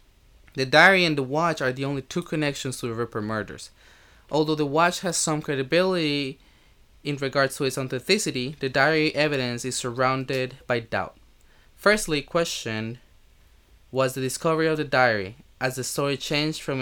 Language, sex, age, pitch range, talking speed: English, male, 20-39, 115-155 Hz, 160 wpm